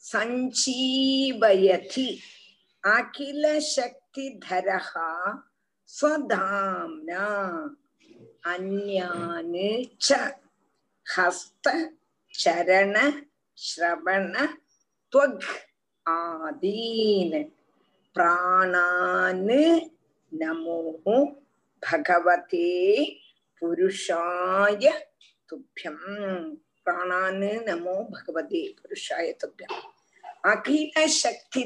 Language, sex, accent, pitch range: Tamil, female, native, 195-290 Hz